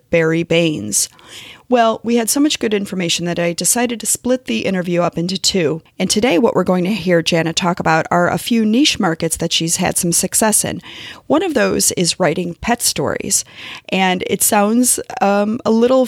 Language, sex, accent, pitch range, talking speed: English, female, American, 180-230 Hz, 200 wpm